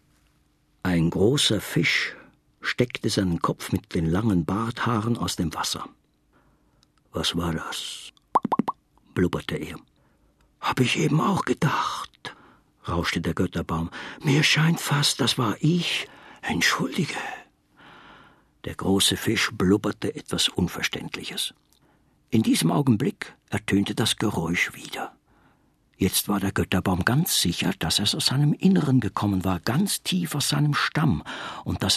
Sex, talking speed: male, 125 wpm